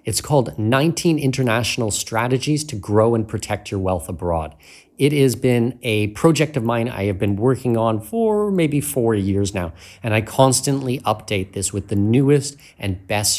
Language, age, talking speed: English, 30-49, 175 wpm